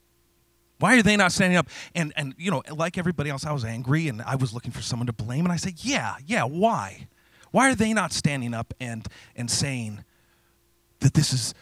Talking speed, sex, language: 215 wpm, male, English